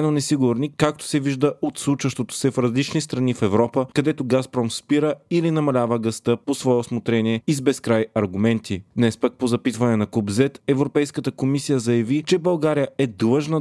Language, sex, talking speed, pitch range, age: Bulgarian, male, 170 wpm, 115-145 Hz, 30-49